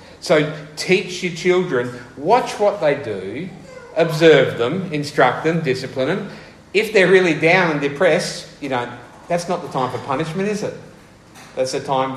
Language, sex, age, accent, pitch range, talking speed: English, male, 50-69, Australian, 130-180 Hz, 165 wpm